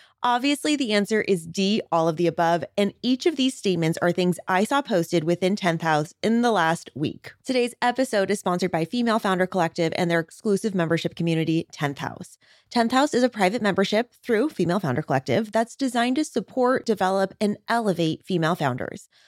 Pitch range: 170-225 Hz